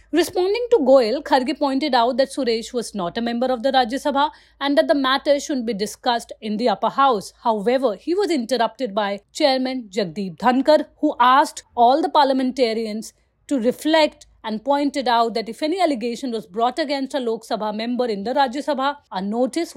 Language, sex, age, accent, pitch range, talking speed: English, female, 30-49, Indian, 225-285 Hz, 190 wpm